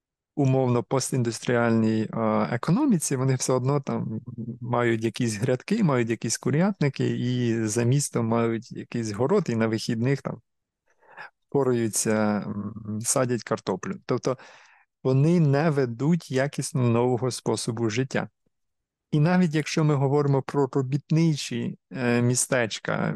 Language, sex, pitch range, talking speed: Ukrainian, male, 120-145 Hz, 105 wpm